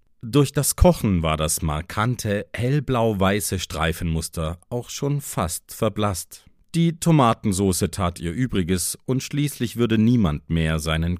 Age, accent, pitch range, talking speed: 40-59, German, 85-125 Hz, 125 wpm